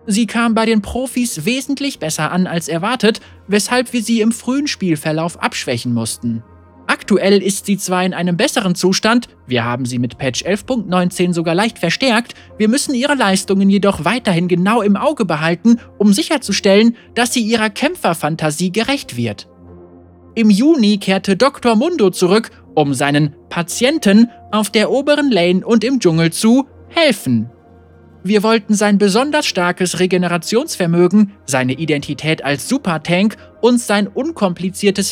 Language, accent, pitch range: German, German, 165-230 Hz